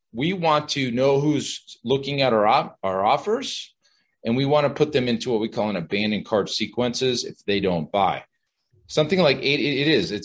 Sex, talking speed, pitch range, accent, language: male, 200 wpm, 115-160 Hz, American, English